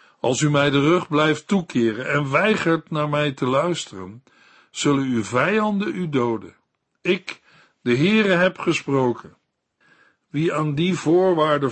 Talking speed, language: 140 wpm, Dutch